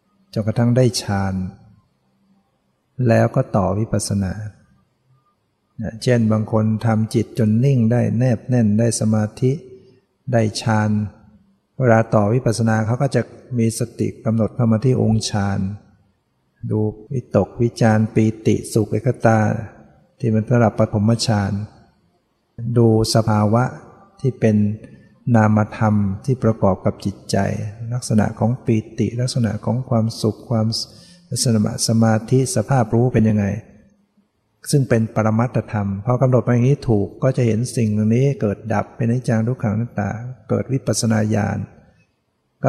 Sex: male